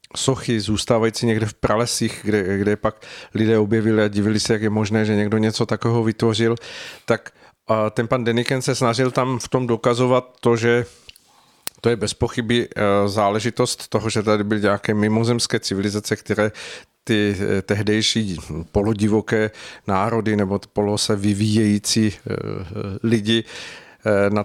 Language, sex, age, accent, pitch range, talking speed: Czech, male, 50-69, native, 105-120 Hz, 135 wpm